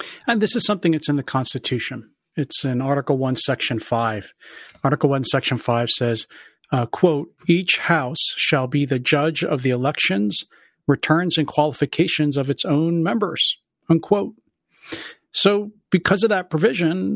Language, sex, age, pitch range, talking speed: English, male, 50-69, 140-175 Hz, 150 wpm